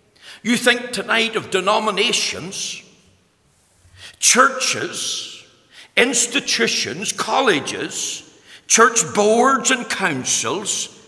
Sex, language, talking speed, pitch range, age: male, English, 65 wpm, 185-230 Hz, 60-79